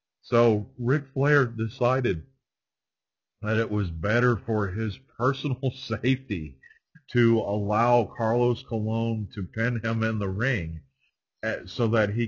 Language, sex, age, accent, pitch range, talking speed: English, male, 50-69, American, 100-120 Hz, 120 wpm